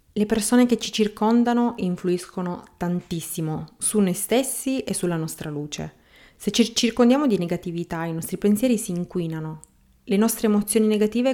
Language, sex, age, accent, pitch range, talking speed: Italian, female, 30-49, native, 175-225 Hz, 150 wpm